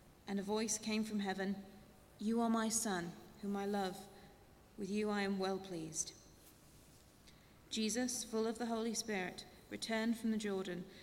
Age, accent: 30-49, British